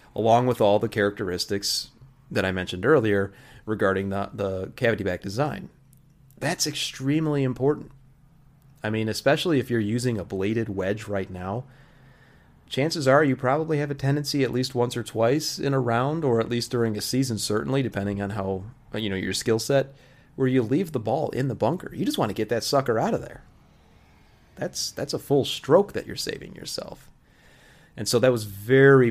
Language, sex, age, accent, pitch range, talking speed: English, male, 30-49, American, 100-130 Hz, 190 wpm